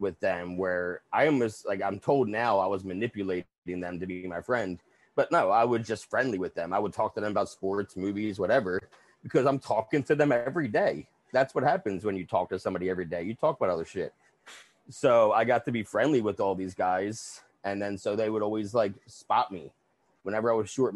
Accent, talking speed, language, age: American, 225 wpm, English, 30-49